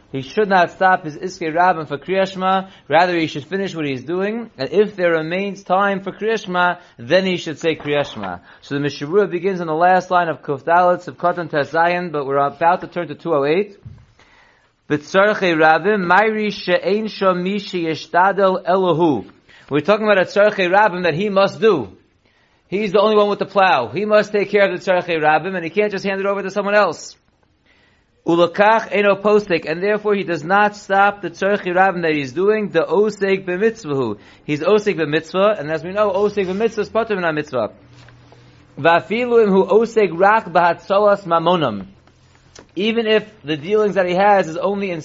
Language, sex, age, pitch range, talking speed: English, male, 30-49, 160-200 Hz, 160 wpm